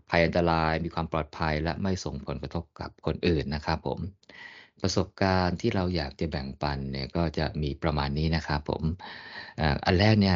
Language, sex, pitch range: Thai, male, 75-95 Hz